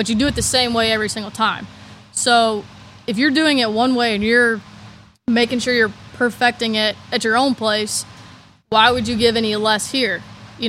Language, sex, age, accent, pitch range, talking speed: English, female, 20-39, American, 215-240 Hz, 200 wpm